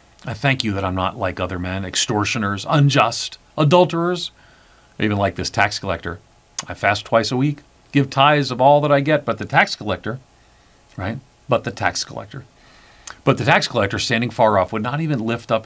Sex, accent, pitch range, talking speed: male, American, 95-130 Hz, 190 wpm